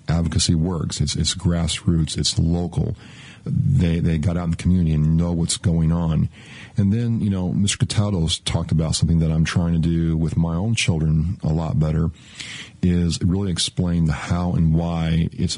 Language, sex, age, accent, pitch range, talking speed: English, male, 40-59, American, 80-95 Hz, 185 wpm